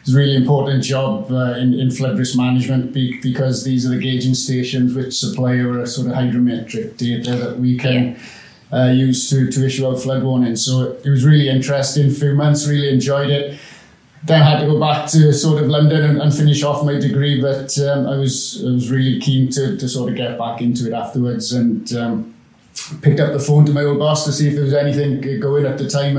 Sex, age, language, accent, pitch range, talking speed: male, 30-49, English, British, 125-140 Hz, 225 wpm